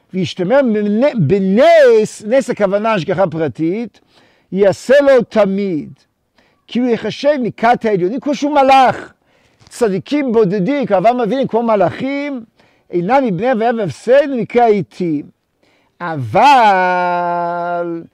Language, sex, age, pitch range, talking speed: Hebrew, male, 50-69, 190-255 Hz, 100 wpm